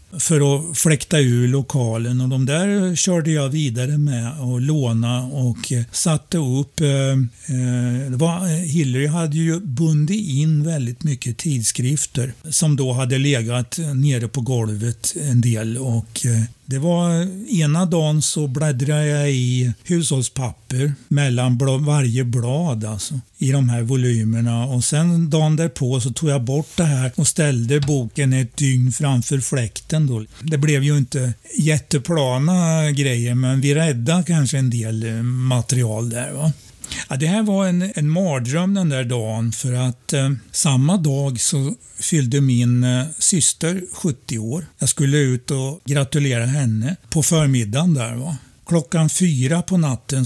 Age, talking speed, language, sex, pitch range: 60-79, 145 wpm, Swedish, male, 125-155 Hz